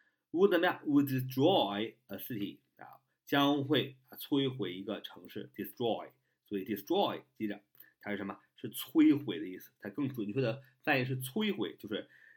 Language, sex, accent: Chinese, male, native